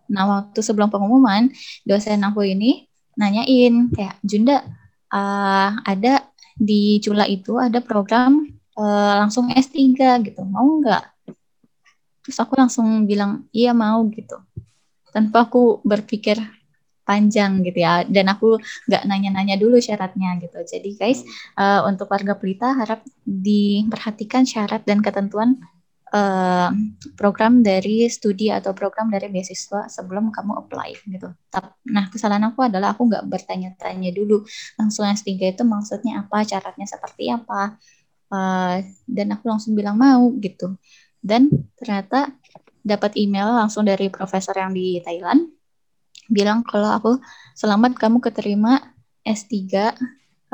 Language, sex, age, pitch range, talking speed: Indonesian, female, 10-29, 195-235 Hz, 125 wpm